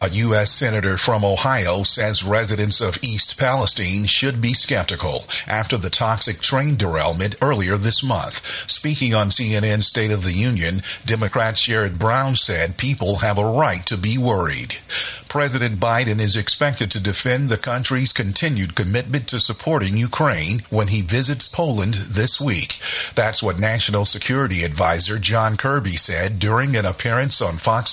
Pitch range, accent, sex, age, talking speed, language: 100-125 Hz, American, male, 50-69, 155 wpm, English